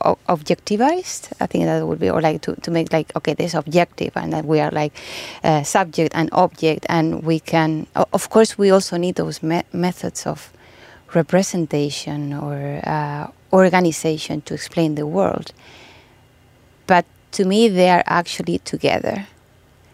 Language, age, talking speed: Finnish, 20-39, 155 wpm